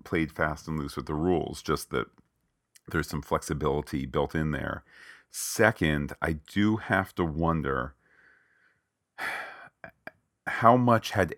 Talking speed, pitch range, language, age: 125 wpm, 75-90 Hz, English, 40-59